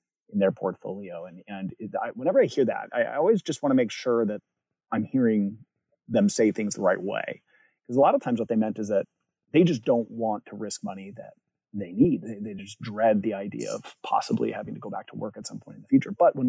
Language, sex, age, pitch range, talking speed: English, male, 30-49, 110-150 Hz, 250 wpm